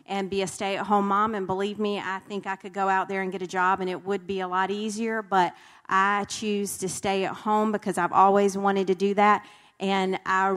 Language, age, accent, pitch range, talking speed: English, 40-59, American, 185-200 Hz, 240 wpm